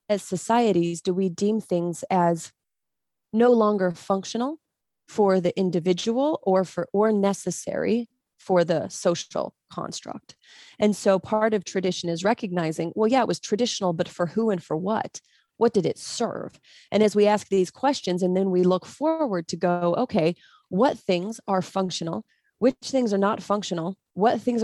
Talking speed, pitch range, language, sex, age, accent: 165 wpm, 175-210 Hz, English, female, 30-49, American